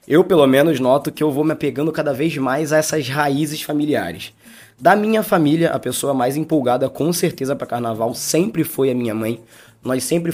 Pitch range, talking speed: 130-170 Hz, 195 wpm